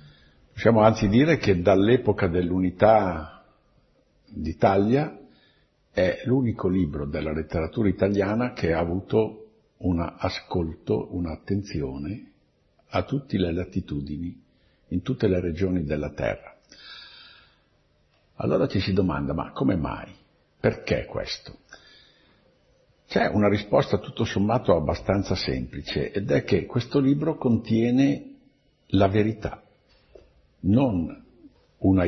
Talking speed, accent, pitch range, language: 105 wpm, native, 85-110 Hz, Italian